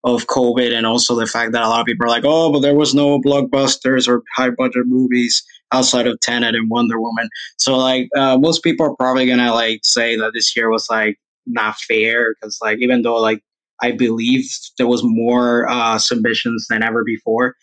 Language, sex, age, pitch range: English, male, 20-39, 115-135 Hz